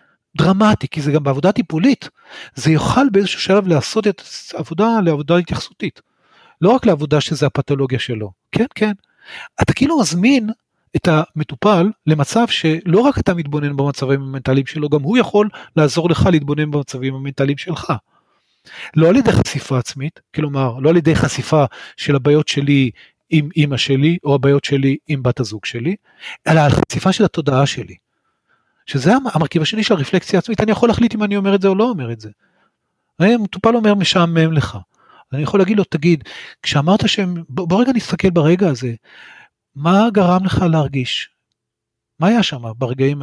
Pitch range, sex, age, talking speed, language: 140-195 Hz, male, 40-59, 165 wpm, Hebrew